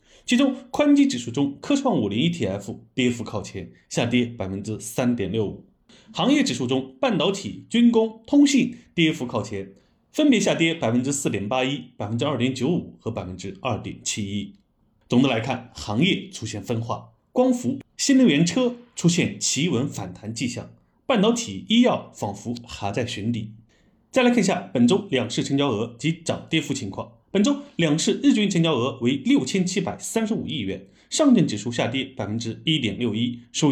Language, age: Chinese, 30-49